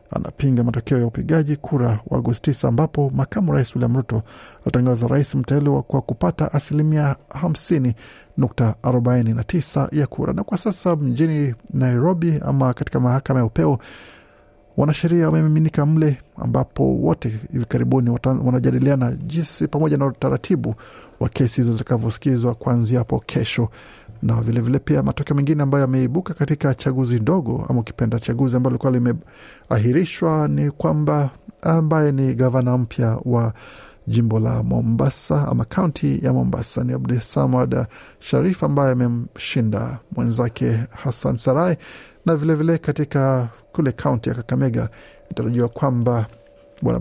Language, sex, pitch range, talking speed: Swahili, male, 120-150 Hz, 125 wpm